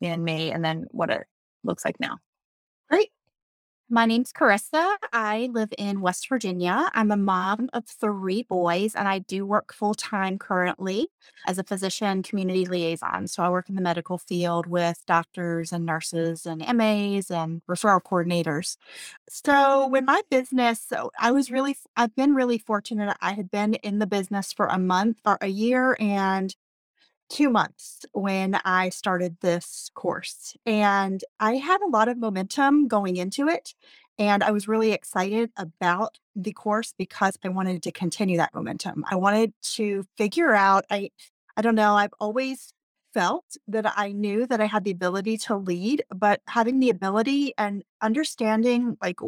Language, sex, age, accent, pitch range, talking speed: English, female, 30-49, American, 185-235 Hz, 165 wpm